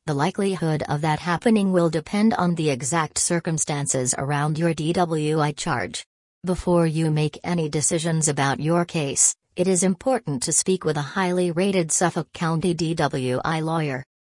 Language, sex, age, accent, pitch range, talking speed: English, female, 40-59, American, 150-175 Hz, 150 wpm